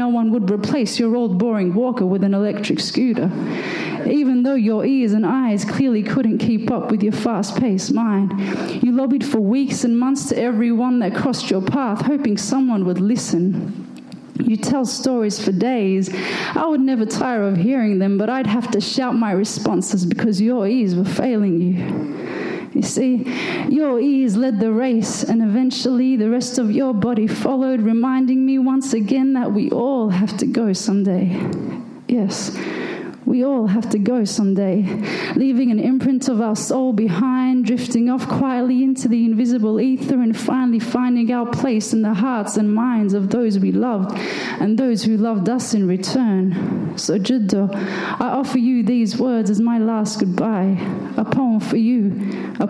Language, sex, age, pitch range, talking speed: English, female, 30-49, 205-255 Hz, 170 wpm